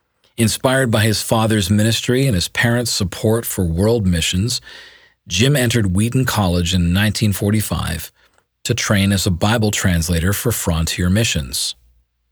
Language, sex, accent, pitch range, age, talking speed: English, male, American, 85-110 Hz, 40-59, 130 wpm